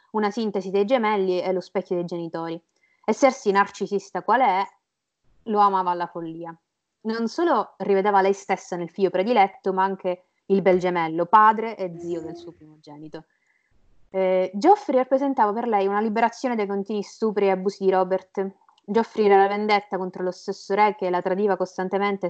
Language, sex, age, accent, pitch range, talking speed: Italian, female, 20-39, native, 175-205 Hz, 170 wpm